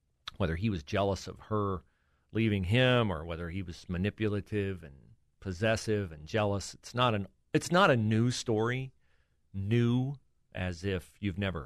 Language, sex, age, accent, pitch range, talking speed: English, male, 40-59, American, 85-115 Hz, 145 wpm